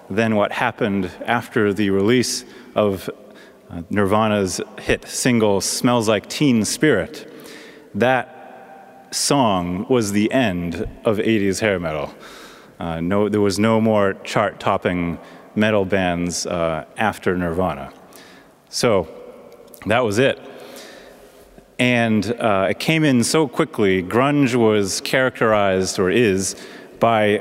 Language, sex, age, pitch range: English, male, 30-49, 95-120 Hz